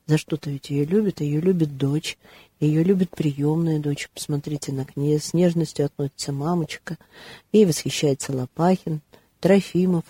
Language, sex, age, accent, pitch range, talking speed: Russian, female, 40-59, native, 140-170 Hz, 145 wpm